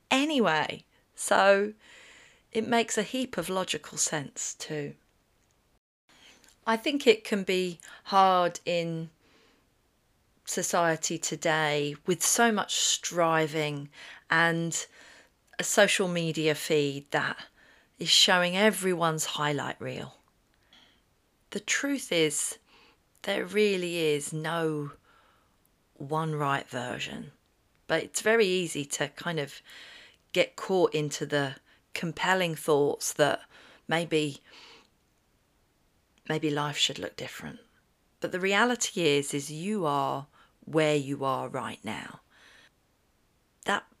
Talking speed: 105 wpm